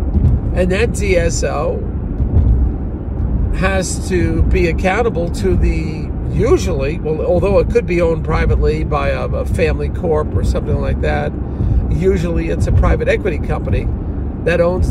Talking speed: 135 wpm